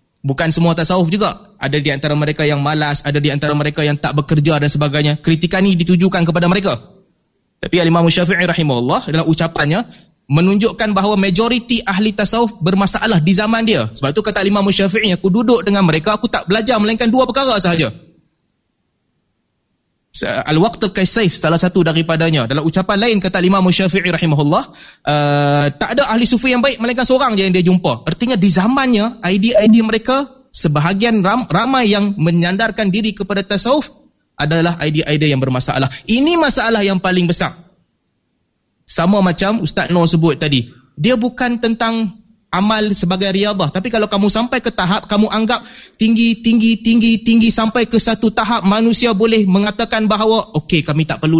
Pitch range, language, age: 150-220 Hz, Malay, 20-39